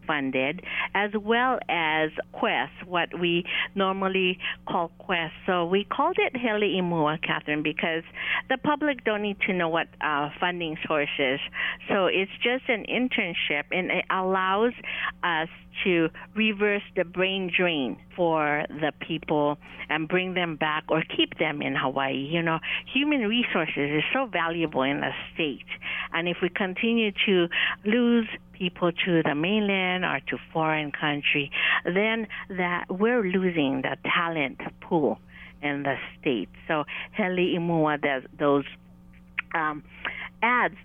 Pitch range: 150-195 Hz